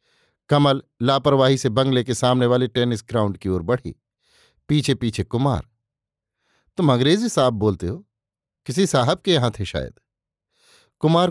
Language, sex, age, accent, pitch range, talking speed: Hindi, male, 50-69, native, 120-145 Hz, 145 wpm